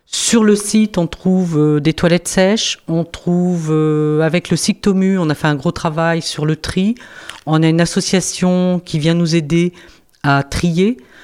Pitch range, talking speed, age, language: 155-185 Hz, 175 wpm, 40-59, French